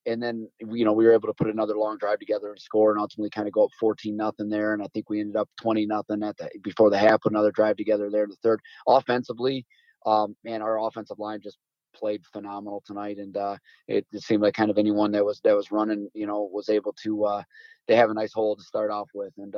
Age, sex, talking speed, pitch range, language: 20-39, male, 265 wpm, 105-120 Hz, English